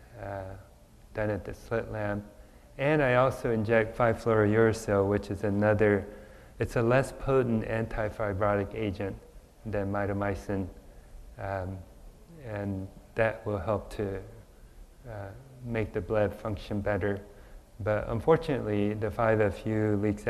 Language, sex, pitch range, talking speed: English, male, 100-115 Hz, 115 wpm